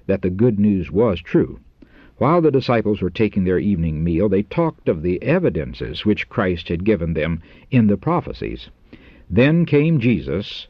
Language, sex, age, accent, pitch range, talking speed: English, male, 60-79, American, 90-125 Hz, 170 wpm